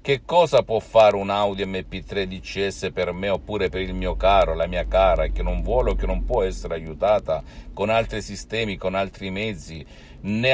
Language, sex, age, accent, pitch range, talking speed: Italian, male, 50-69, native, 85-105 Hz, 195 wpm